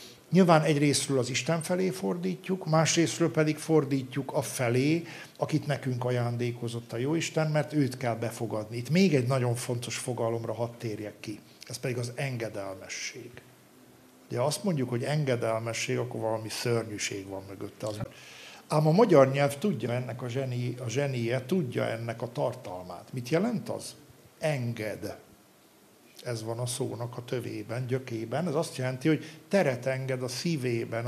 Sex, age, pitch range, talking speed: male, 50-69, 120-155 Hz, 150 wpm